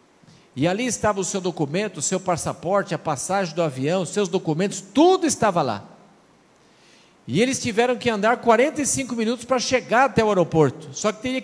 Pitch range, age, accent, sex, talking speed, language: 165-270 Hz, 50-69, Brazilian, male, 180 wpm, Portuguese